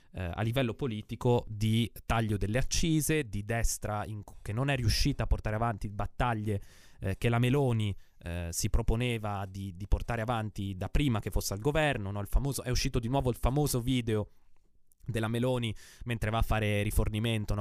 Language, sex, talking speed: Italian, male, 180 wpm